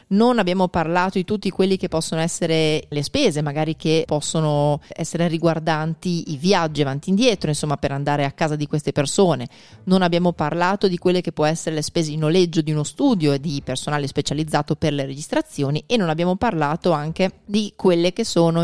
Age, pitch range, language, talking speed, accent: 30-49, 155-190 Hz, Italian, 195 wpm, native